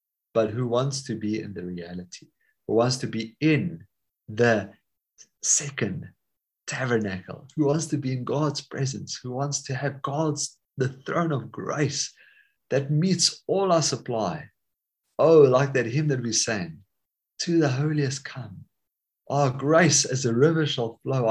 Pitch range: 110-145 Hz